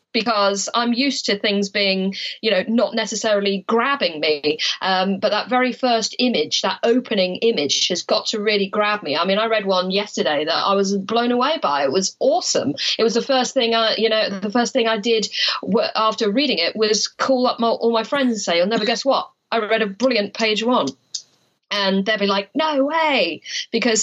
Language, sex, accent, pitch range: English, female, British, 180-230 Hz